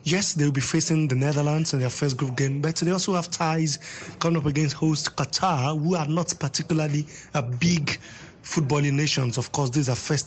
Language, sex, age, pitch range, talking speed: English, male, 20-39, 135-160 Hz, 210 wpm